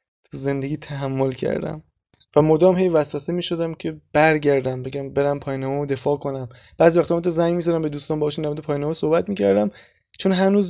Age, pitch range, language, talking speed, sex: 20-39, 140-165 Hz, Persian, 175 wpm, male